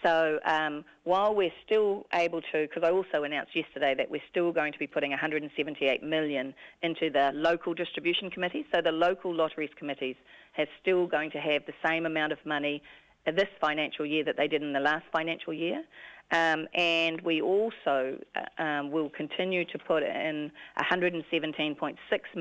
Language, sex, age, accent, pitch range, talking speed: English, female, 40-59, Australian, 145-170 Hz, 170 wpm